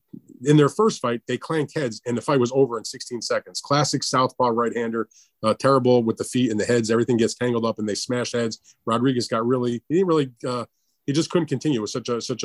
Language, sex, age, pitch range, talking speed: English, male, 30-49, 115-135 Hz, 250 wpm